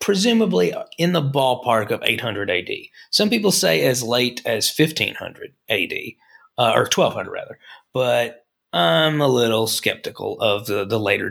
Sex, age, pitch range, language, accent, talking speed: male, 30-49, 120-175 Hz, English, American, 150 wpm